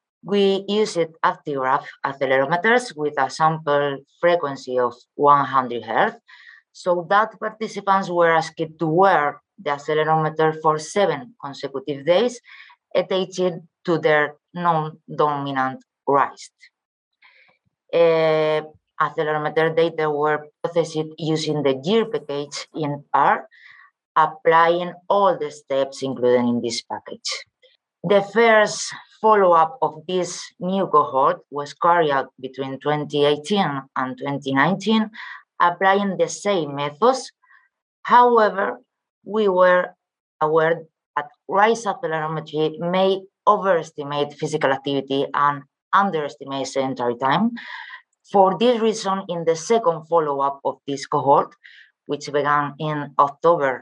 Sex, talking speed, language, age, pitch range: female, 105 wpm, English, 20-39, 145-195 Hz